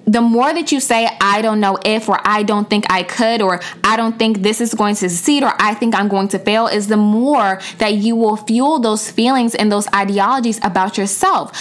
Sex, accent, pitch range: female, American, 185-230 Hz